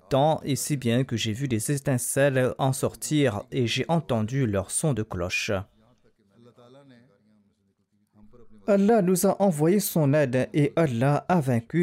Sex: male